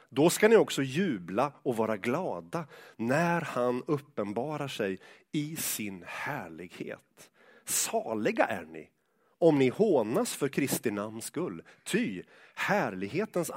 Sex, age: male, 30-49